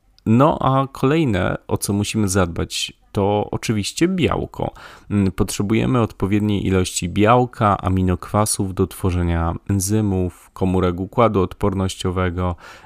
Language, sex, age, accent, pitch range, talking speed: Polish, male, 30-49, native, 90-105 Hz, 100 wpm